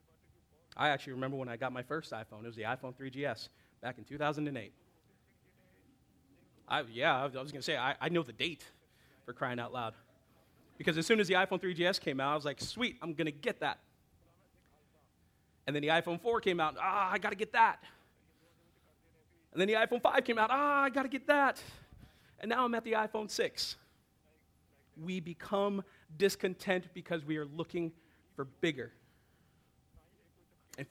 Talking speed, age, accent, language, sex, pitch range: 180 wpm, 30-49, American, English, male, 130-180 Hz